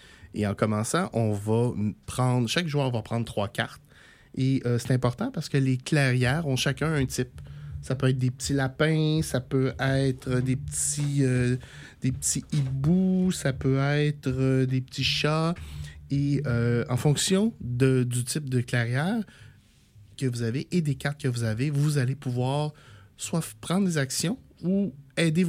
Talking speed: 165 wpm